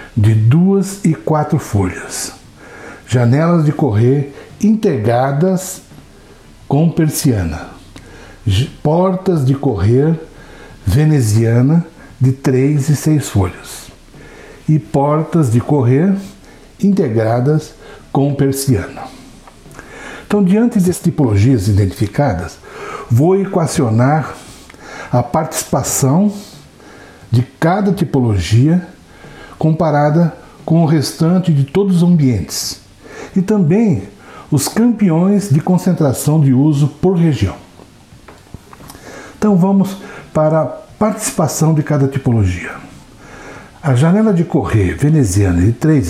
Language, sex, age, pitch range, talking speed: Portuguese, male, 60-79, 120-165 Hz, 95 wpm